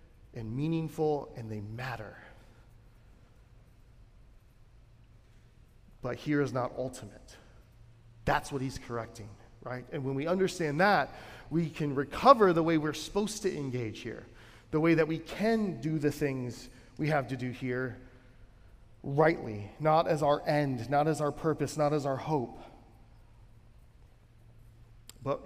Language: English